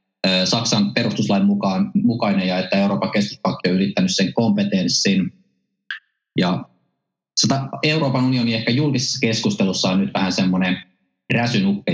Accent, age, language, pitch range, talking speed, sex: native, 20-39, Finnish, 100-135 Hz, 115 wpm, male